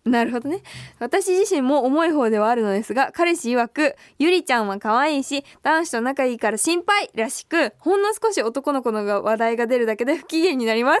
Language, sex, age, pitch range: Japanese, female, 20-39, 235-340 Hz